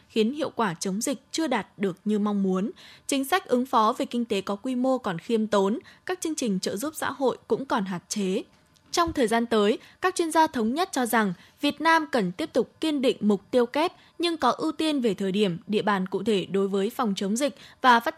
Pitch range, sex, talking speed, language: 210-285 Hz, female, 245 wpm, Vietnamese